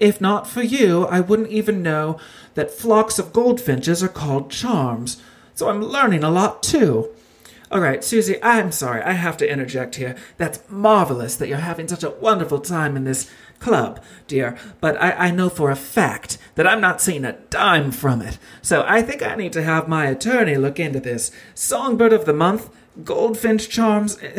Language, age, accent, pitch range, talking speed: English, 40-59, American, 150-220 Hz, 190 wpm